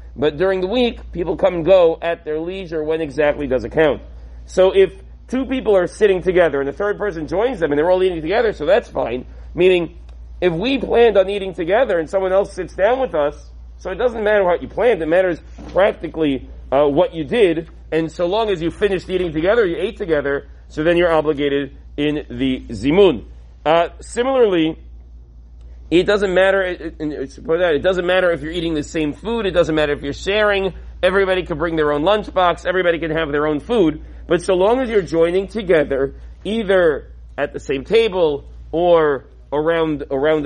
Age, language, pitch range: 40-59, English, 145-190 Hz